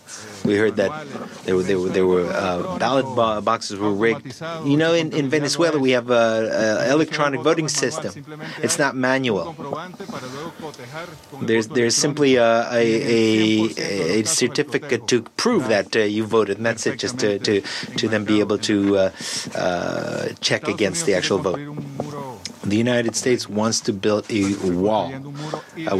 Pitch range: 105-130 Hz